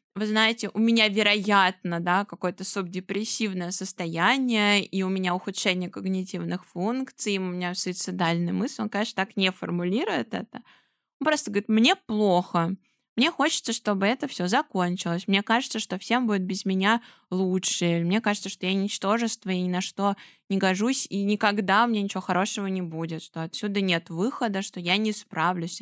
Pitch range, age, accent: 180-225 Hz, 20-39, native